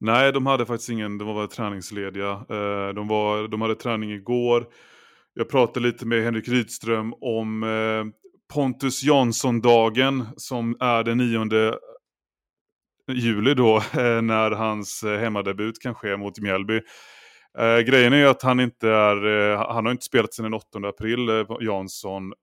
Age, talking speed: 30-49, 135 wpm